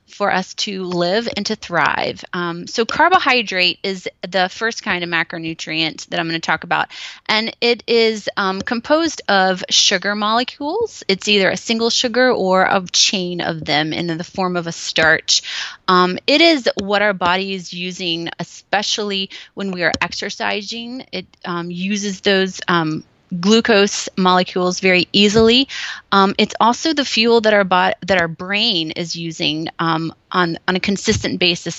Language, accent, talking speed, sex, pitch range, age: English, American, 160 wpm, female, 180-230 Hz, 20-39